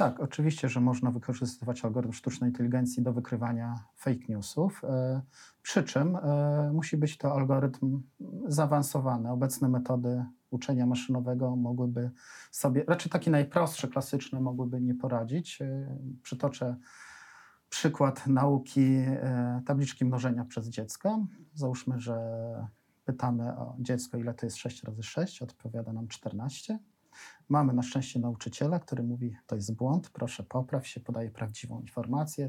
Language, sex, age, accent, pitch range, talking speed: Polish, male, 40-59, native, 120-140 Hz, 125 wpm